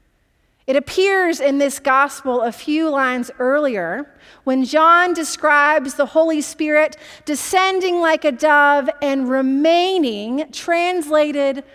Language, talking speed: English, 110 wpm